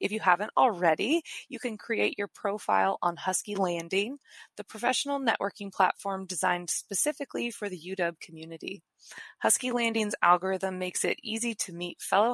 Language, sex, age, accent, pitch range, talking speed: English, female, 20-39, American, 175-215 Hz, 150 wpm